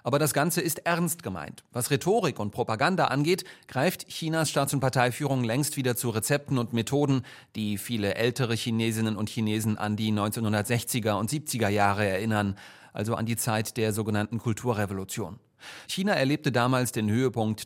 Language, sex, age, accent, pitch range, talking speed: German, male, 30-49, German, 110-140 Hz, 160 wpm